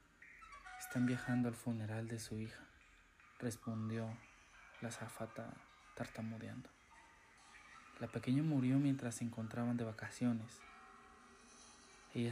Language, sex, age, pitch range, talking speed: Spanish, male, 20-39, 115-130 Hz, 95 wpm